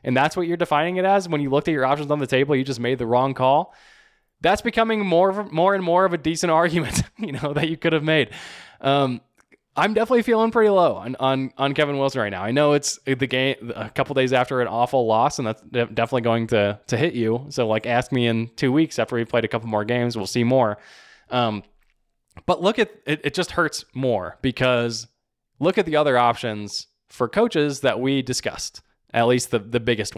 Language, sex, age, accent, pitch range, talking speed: English, male, 20-39, American, 115-150 Hz, 230 wpm